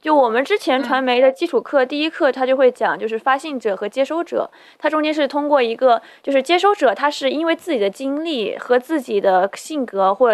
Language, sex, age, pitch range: Chinese, female, 20-39, 215-290 Hz